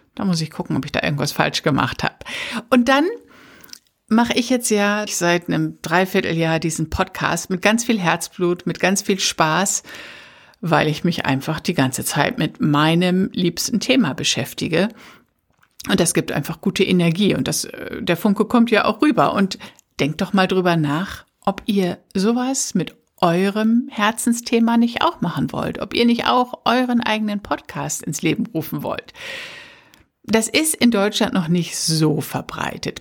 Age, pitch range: 60-79, 170-215 Hz